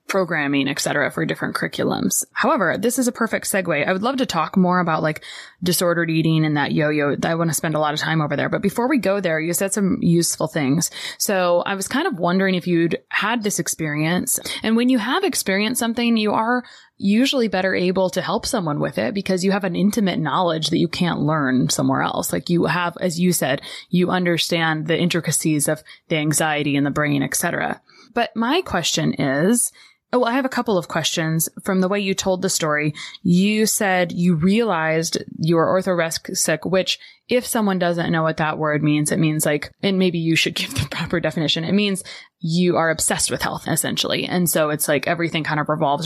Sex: female